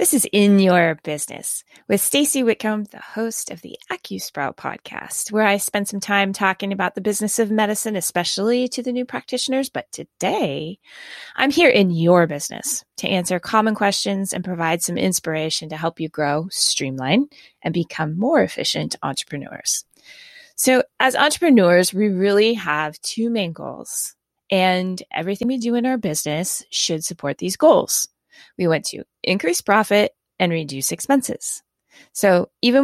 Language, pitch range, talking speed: English, 165-230 Hz, 155 wpm